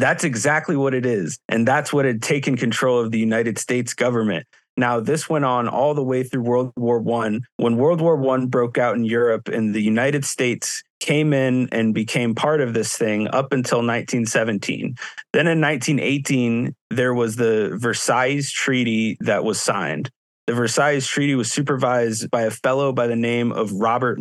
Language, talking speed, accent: English, 185 wpm, American